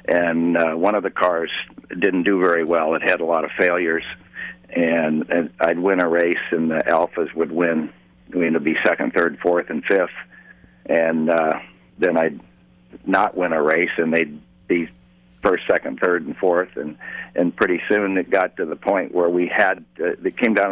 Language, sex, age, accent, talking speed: English, male, 60-79, American, 200 wpm